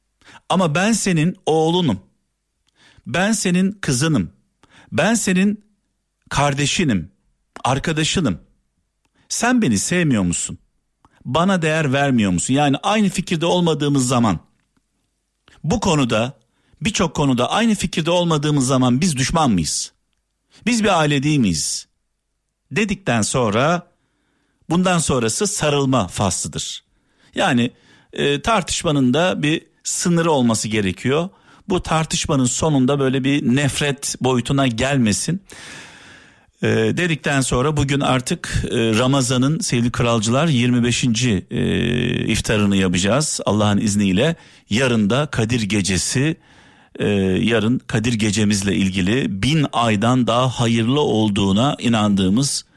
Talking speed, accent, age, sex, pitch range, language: 105 wpm, native, 50-69, male, 115-160 Hz, Turkish